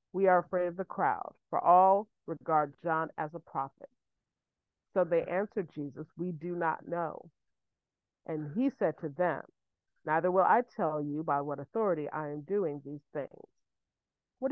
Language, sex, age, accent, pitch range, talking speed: English, female, 40-59, American, 160-230 Hz, 165 wpm